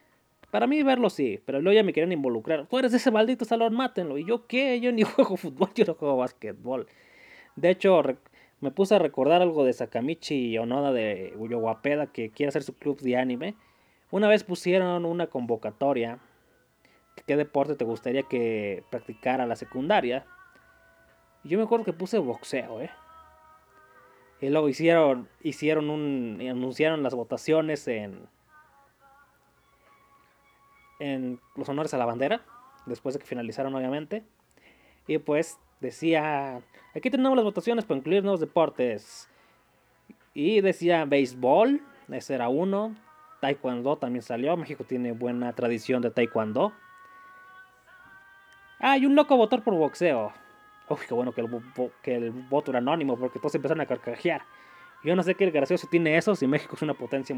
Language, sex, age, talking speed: Spanish, male, 20-39, 155 wpm